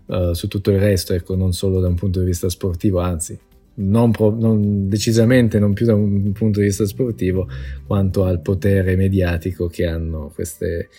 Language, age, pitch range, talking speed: Italian, 20-39, 95-110 Hz, 170 wpm